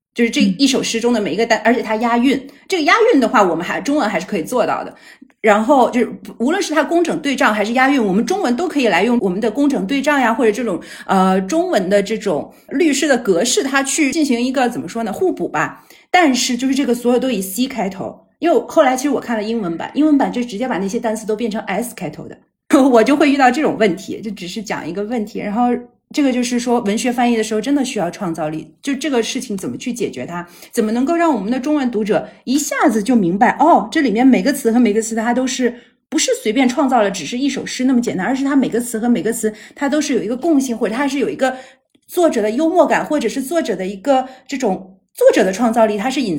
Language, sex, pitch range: Chinese, female, 220-285 Hz